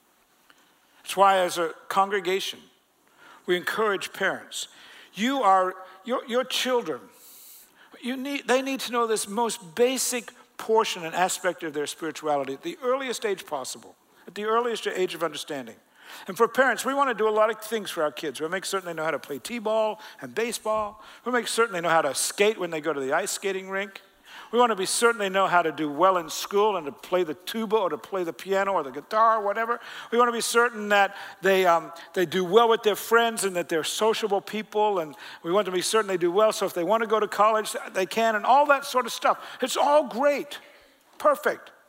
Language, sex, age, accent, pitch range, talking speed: English, male, 60-79, American, 180-230 Hz, 225 wpm